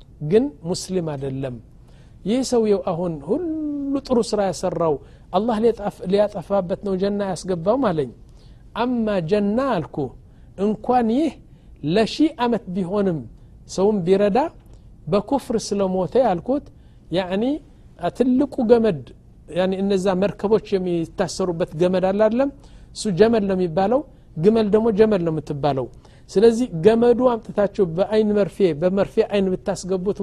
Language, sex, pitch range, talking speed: Amharic, male, 155-215 Hz, 110 wpm